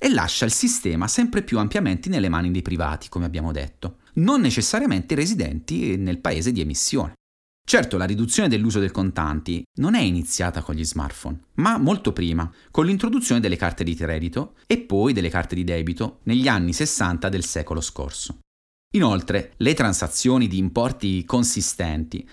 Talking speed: 160 wpm